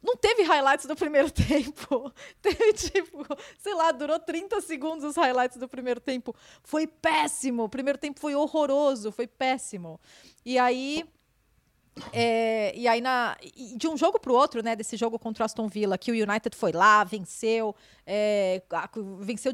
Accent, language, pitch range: Brazilian, Portuguese, 220-295 Hz